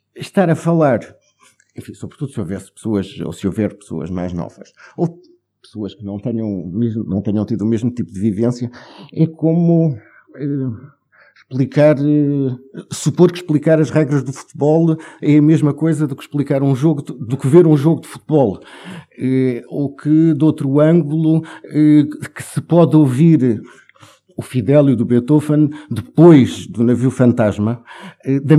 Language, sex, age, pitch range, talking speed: Portuguese, male, 50-69, 120-160 Hz, 155 wpm